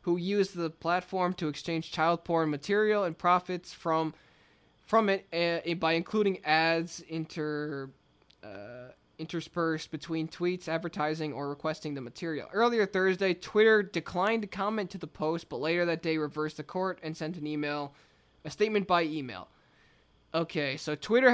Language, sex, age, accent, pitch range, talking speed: English, male, 20-39, American, 155-185 Hz, 155 wpm